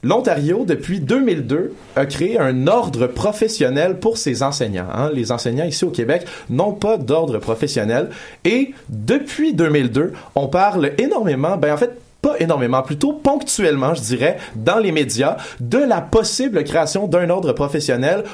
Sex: male